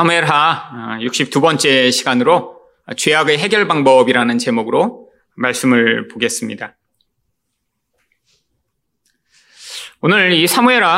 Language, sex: Korean, male